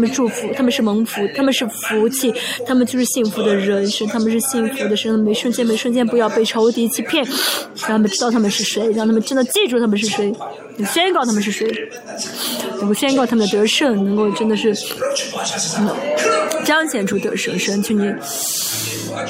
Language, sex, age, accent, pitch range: Chinese, female, 20-39, native, 205-240 Hz